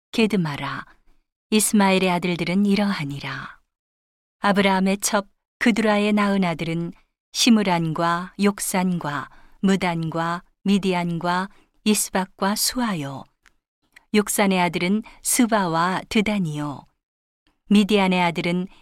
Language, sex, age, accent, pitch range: Korean, female, 40-59, native, 170-200 Hz